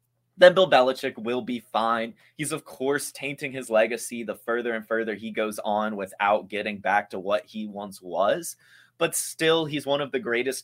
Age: 20-39